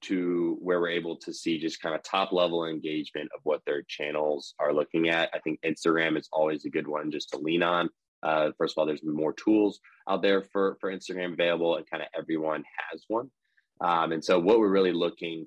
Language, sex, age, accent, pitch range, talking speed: English, male, 20-39, American, 80-95 Hz, 220 wpm